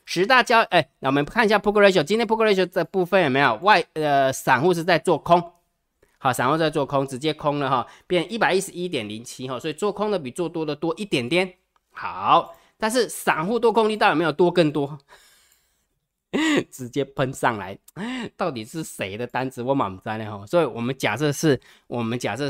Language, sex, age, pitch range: Chinese, male, 20-39, 125-175 Hz